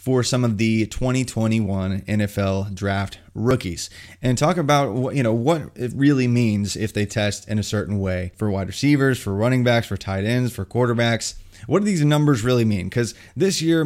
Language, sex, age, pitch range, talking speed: English, male, 20-39, 105-135 Hz, 195 wpm